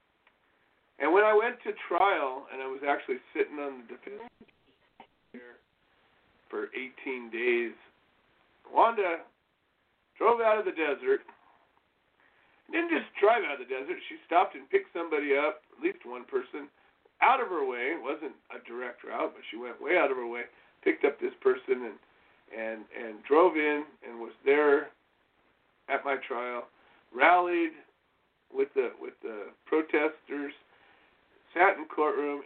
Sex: male